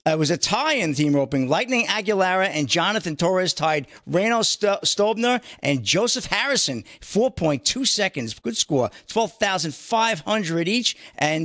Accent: American